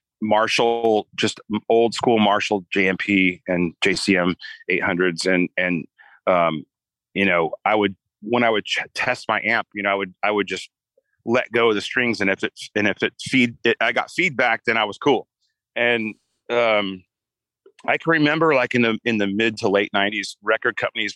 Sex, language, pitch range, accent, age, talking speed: male, English, 95-115 Hz, American, 30-49, 180 wpm